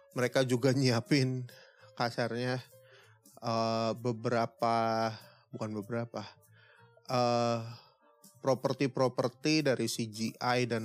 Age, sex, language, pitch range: 20-39, male, Indonesian, 115-135 Hz